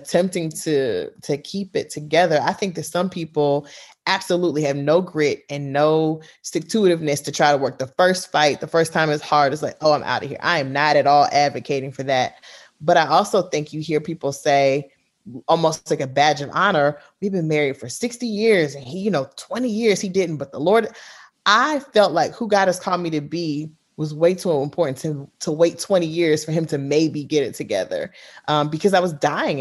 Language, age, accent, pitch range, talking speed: English, 20-39, American, 145-185 Hz, 220 wpm